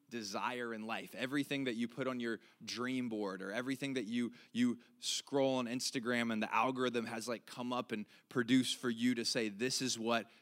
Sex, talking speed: male, 200 wpm